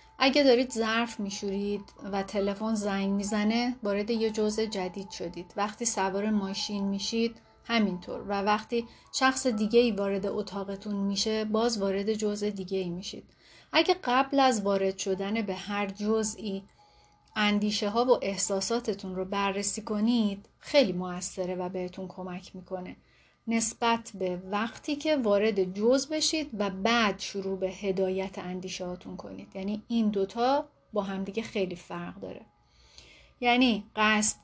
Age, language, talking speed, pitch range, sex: 30-49, Persian, 135 wpm, 190-225 Hz, female